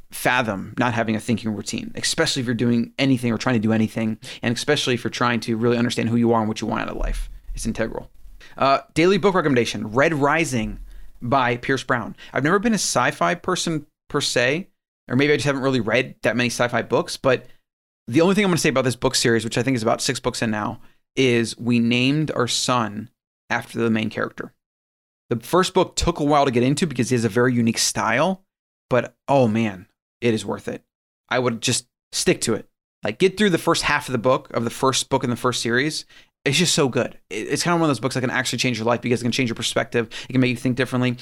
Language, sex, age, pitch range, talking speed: English, male, 30-49, 115-140 Hz, 245 wpm